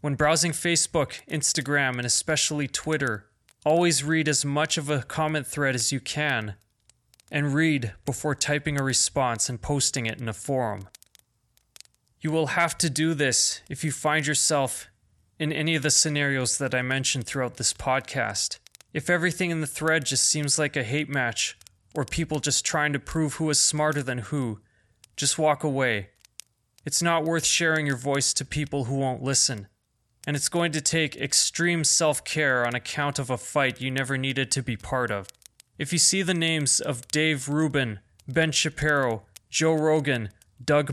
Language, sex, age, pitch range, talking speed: English, male, 20-39, 125-155 Hz, 175 wpm